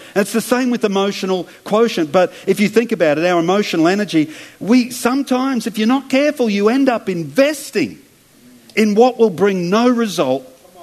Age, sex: 50-69, male